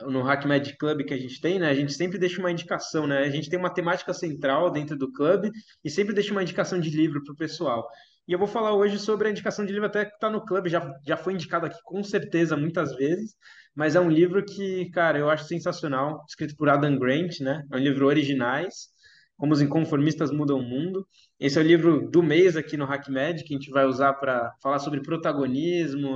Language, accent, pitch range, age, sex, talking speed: Portuguese, Brazilian, 140-180 Hz, 20-39, male, 230 wpm